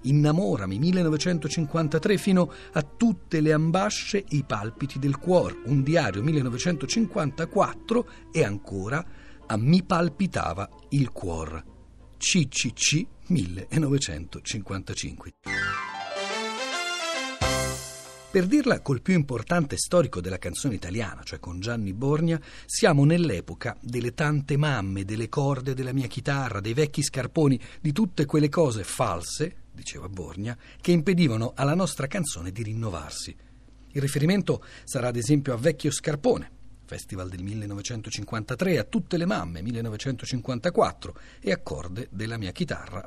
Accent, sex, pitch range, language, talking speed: native, male, 105-160 Hz, Italian, 120 wpm